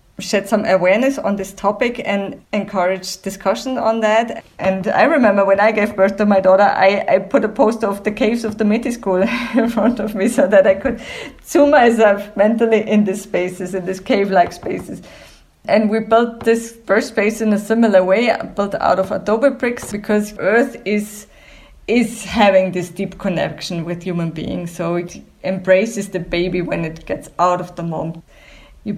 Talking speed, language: 185 wpm, English